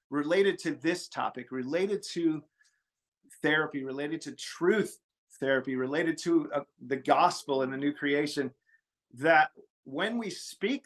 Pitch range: 135-195 Hz